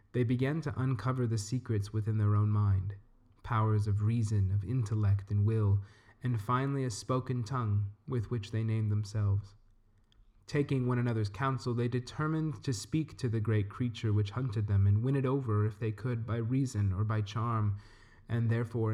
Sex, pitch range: male, 105-125 Hz